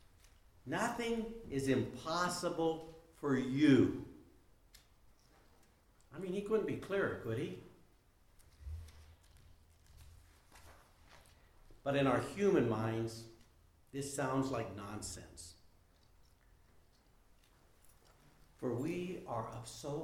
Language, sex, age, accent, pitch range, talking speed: French, male, 60-79, American, 90-135 Hz, 80 wpm